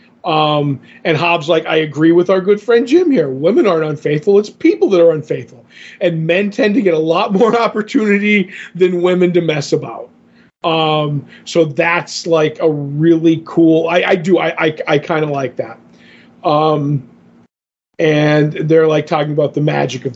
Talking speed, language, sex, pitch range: 180 wpm, English, male, 150-170 Hz